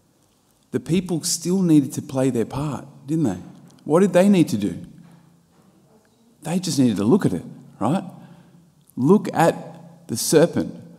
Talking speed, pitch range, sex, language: 155 wpm, 130-170 Hz, male, English